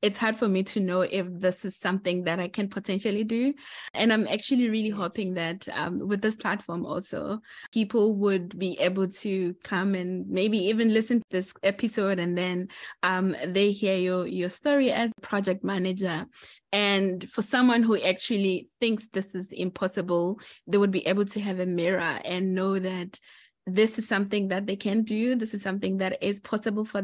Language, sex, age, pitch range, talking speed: English, female, 20-39, 185-215 Hz, 190 wpm